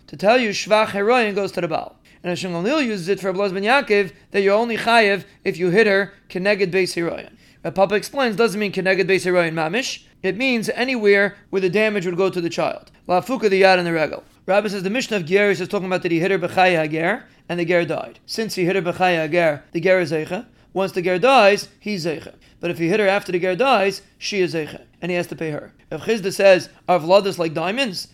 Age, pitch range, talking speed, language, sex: 40-59, 175-205 Hz, 245 wpm, English, male